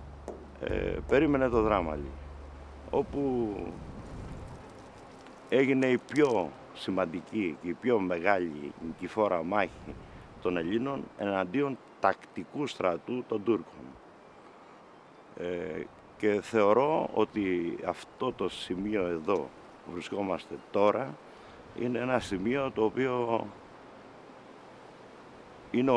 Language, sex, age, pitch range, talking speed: Greek, male, 60-79, 90-120 Hz, 90 wpm